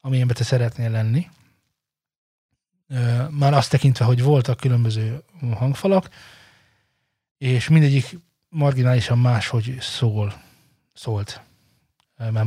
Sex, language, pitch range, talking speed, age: male, Hungarian, 115-140 Hz, 85 wpm, 20-39